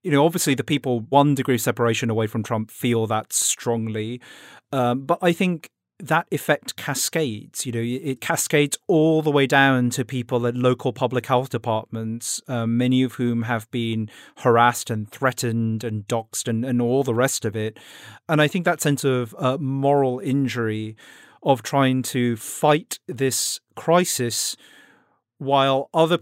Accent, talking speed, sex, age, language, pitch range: British, 165 wpm, male, 30-49, English, 120-145 Hz